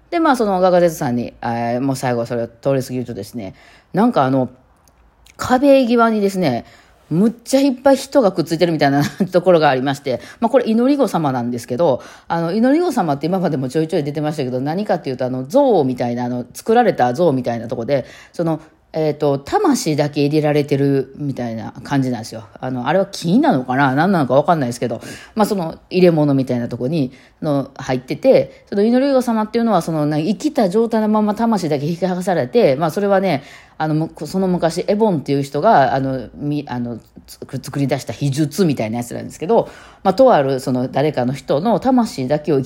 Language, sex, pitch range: Japanese, female, 130-195 Hz